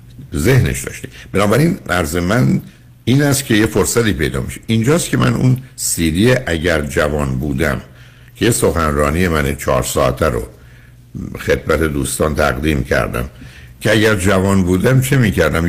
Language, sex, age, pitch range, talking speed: Persian, male, 60-79, 75-110 Hz, 140 wpm